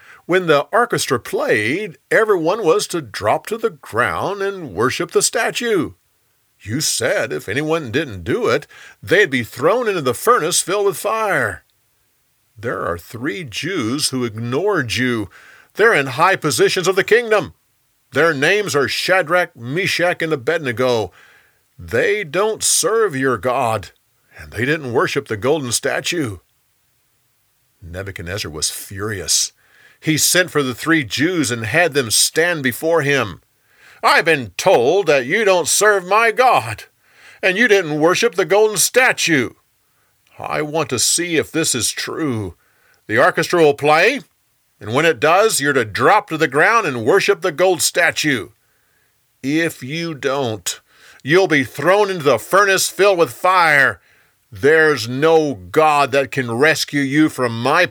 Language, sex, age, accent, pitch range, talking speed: English, male, 50-69, American, 130-195 Hz, 150 wpm